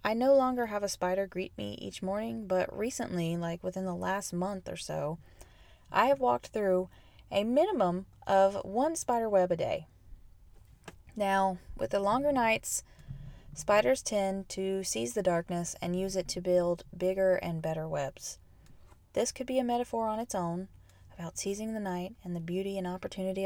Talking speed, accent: 175 wpm, American